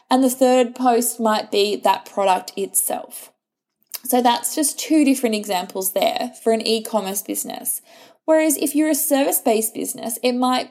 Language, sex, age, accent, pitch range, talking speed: English, female, 20-39, Australian, 215-260 Hz, 155 wpm